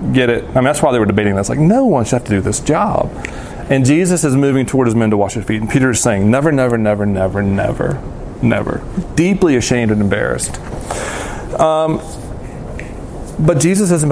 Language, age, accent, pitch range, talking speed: English, 30-49, American, 115-160 Hz, 205 wpm